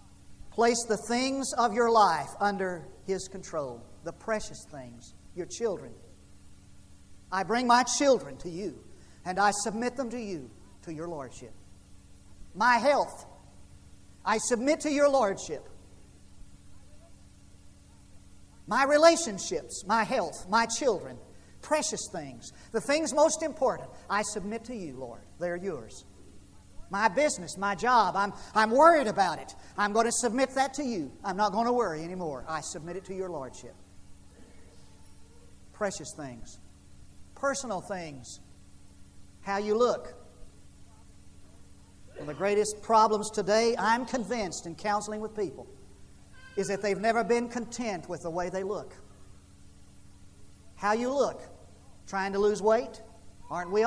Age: 50-69